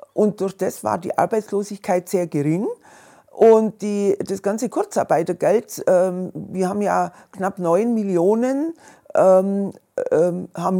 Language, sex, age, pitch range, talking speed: German, female, 40-59, 185-220 Hz, 120 wpm